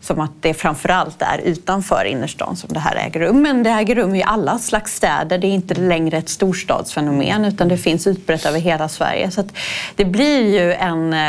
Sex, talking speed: female, 205 wpm